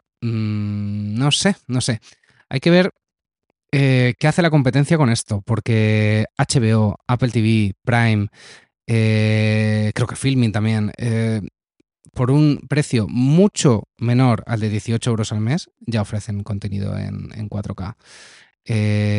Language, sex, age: Spanish, male, 20-39